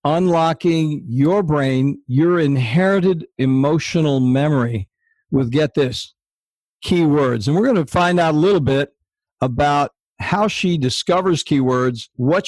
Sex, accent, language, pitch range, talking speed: male, American, English, 130-165 Hz, 125 wpm